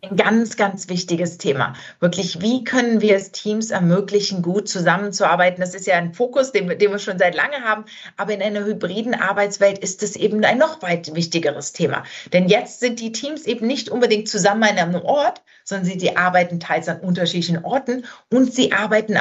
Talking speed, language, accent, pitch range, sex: 195 wpm, German, German, 180-220 Hz, female